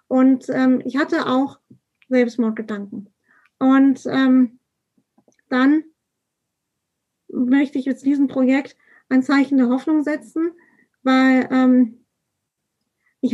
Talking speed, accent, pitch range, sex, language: 100 wpm, German, 255-285 Hz, female, German